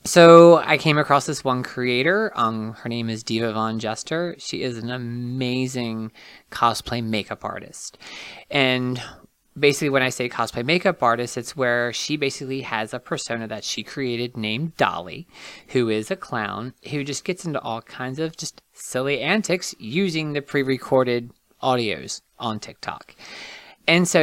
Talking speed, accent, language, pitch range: 155 wpm, American, English, 115-150 Hz